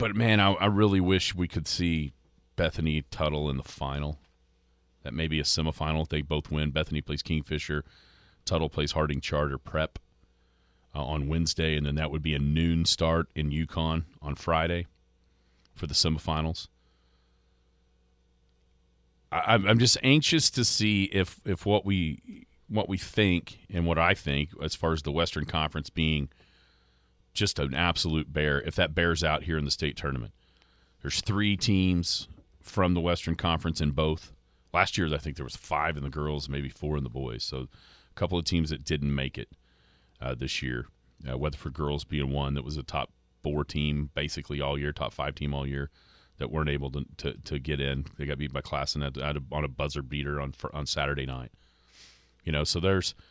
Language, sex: English, male